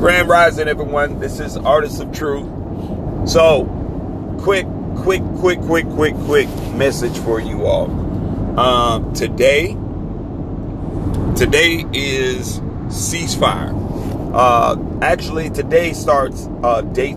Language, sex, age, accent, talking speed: English, male, 40-59, American, 105 wpm